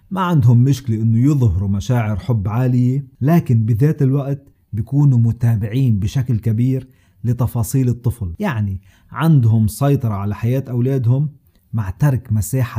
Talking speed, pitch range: 120 wpm, 110-135 Hz